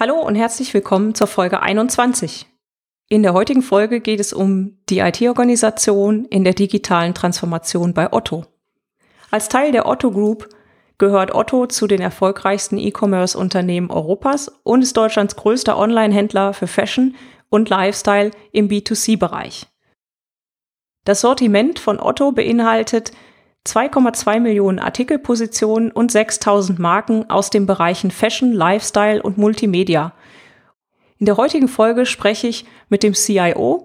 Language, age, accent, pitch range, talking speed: German, 30-49, German, 195-230 Hz, 130 wpm